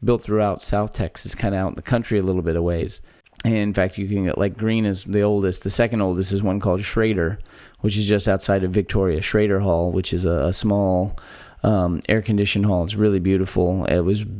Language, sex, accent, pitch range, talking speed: English, male, American, 95-115 Hz, 220 wpm